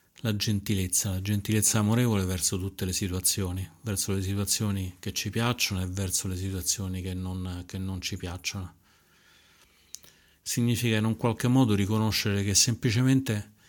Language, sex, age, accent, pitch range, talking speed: Italian, male, 40-59, native, 90-105 Hz, 145 wpm